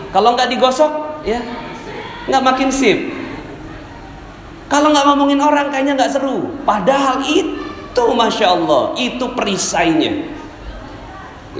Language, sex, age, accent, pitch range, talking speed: Indonesian, male, 40-59, native, 195-295 Hz, 105 wpm